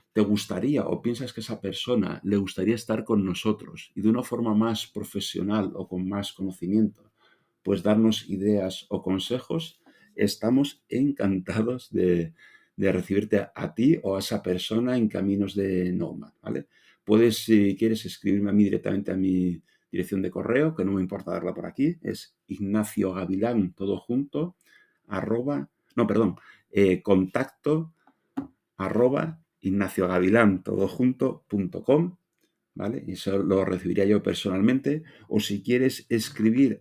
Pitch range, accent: 95-120 Hz, Spanish